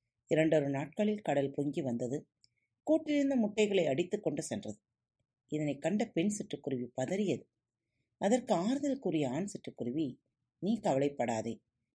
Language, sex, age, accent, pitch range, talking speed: Tamil, female, 30-49, native, 125-205 Hz, 110 wpm